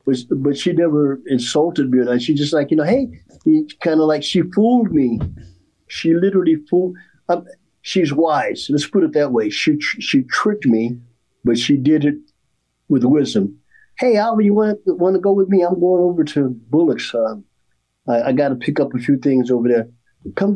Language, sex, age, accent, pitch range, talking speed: English, male, 50-69, American, 120-185 Hz, 195 wpm